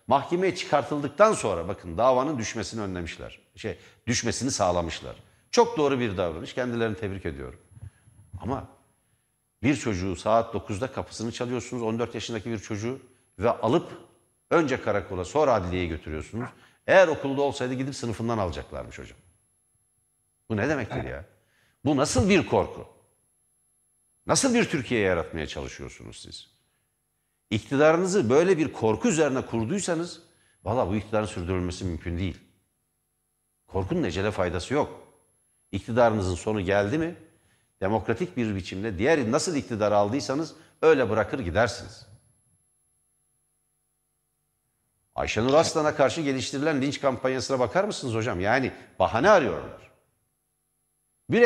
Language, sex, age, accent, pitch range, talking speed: Turkish, male, 60-79, native, 100-140 Hz, 115 wpm